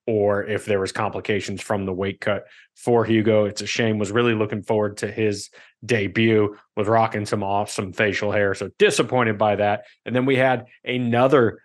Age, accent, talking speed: 30-49, American, 185 wpm